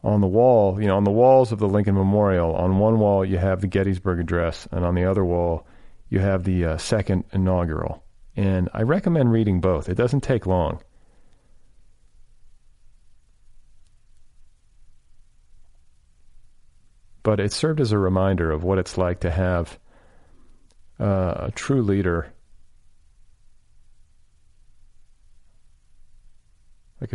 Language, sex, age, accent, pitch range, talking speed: English, male, 40-59, American, 90-110 Hz, 125 wpm